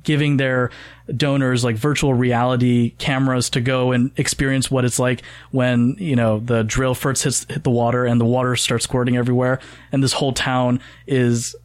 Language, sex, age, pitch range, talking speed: English, male, 20-39, 120-145 Hz, 180 wpm